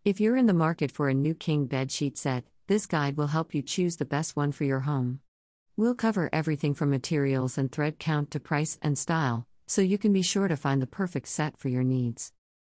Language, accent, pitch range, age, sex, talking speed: English, American, 130-165 Hz, 50-69, female, 225 wpm